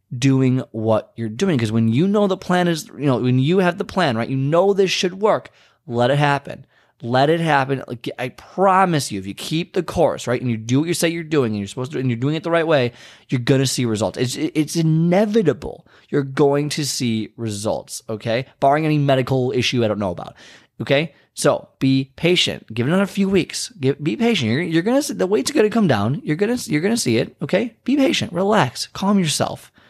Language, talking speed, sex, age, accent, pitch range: English, 225 wpm, male, 20-39, American, 115-170 Hz